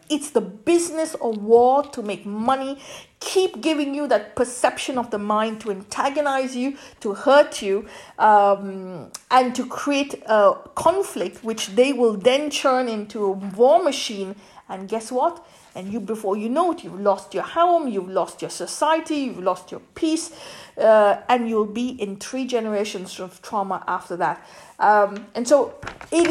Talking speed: 165 wpm